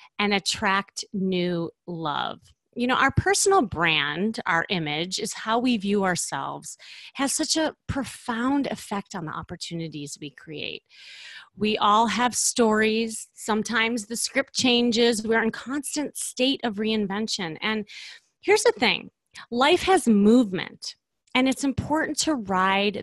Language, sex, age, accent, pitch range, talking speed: English, female, 30-49, American, 190-260 Hz, 135 wpm